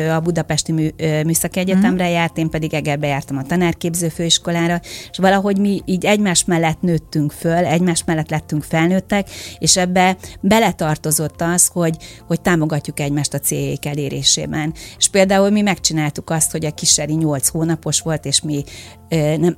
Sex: female